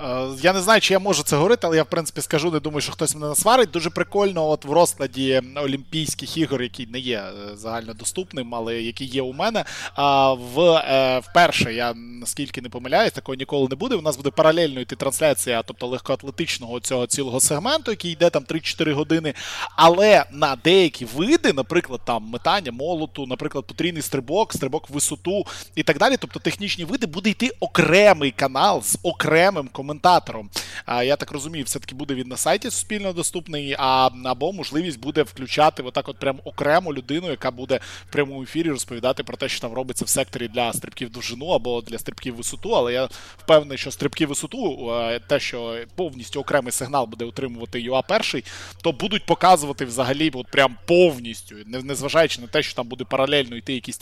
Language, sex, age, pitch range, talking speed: Ukrainian, male, 20-39, 125-165 Hz, 175 wpm